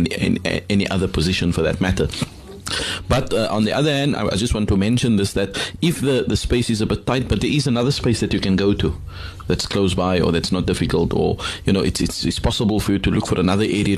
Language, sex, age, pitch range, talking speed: English, male, 30-49, 90-110 Hz, 260 wpm